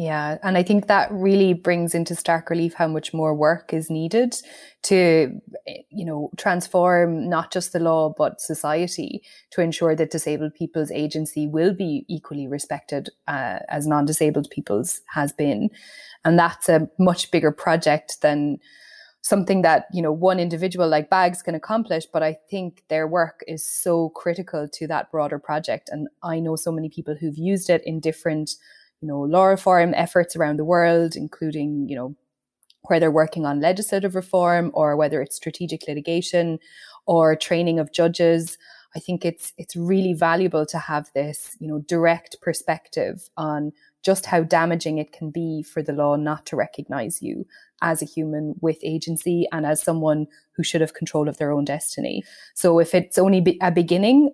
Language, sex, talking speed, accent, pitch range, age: English, female, 175 wpm, Irish, 155-175 Hz, 20-39